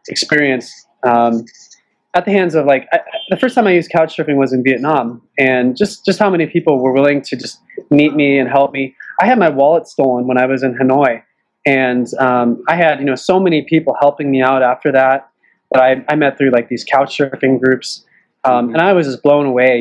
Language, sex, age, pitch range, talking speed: English, male, 20-39, 135-170 Hz, 225 wpm